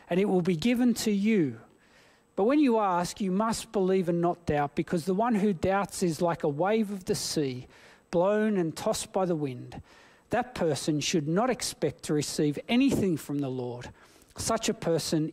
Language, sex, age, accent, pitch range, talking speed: English, male, 40-59, Australian, 150-205 Hz, 190 wpm